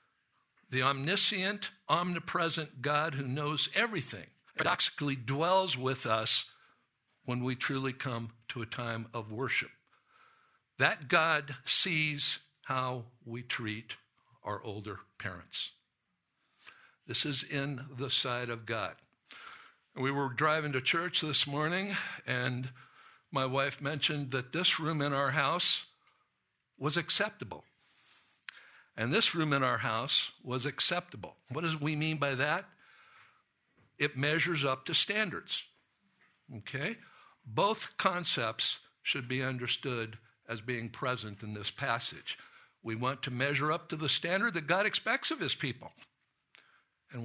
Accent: American